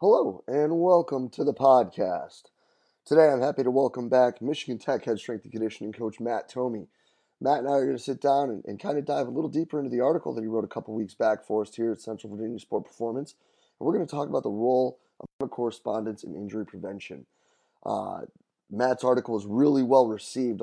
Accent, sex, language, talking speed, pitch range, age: American, male, English, 220 wpm, 110-140 Hz, 20-39